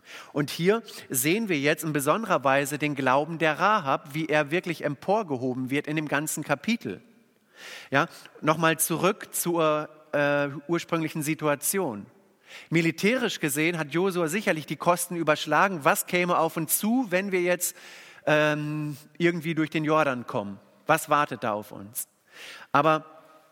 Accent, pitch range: German, 140-175 Hz